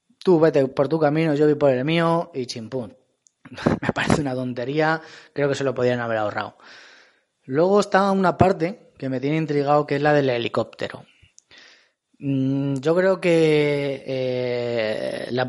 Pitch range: 130-155 Hz